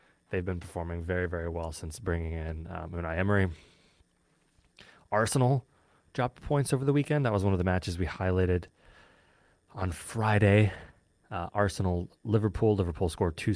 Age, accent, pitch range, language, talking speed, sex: 20-39, American, 85-100 Hz, English, 145 wpm, male